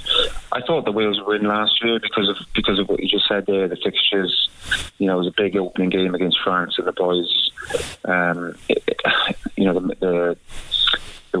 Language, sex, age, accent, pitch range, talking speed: English, male, 20-39, British, 90-95 Hz, 210 wpm